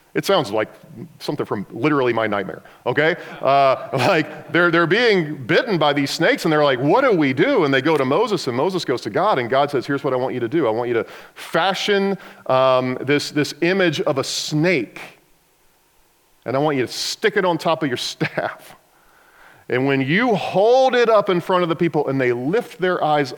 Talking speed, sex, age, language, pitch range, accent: 220 wpm, male, 40-59, English, 120-170 Hz, American